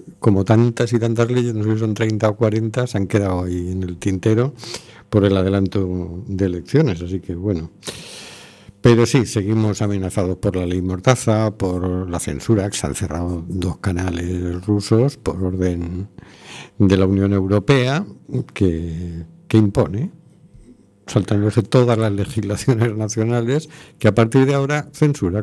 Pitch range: 95-120 Hz